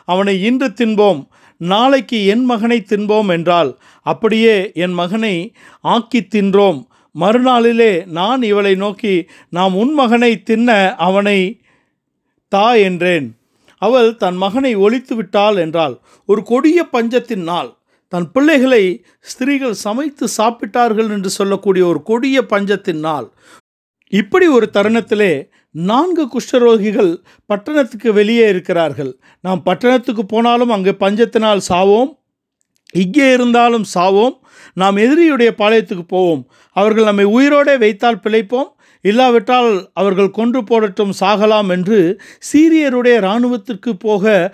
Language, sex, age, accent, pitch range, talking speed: Tamil, male, 50-69, native, 195-245 Hz, 105 wpm